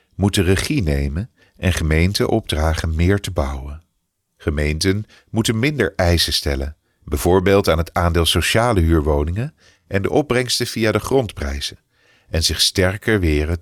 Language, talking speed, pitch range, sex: English, 135 wpm, 80-110 Hz, male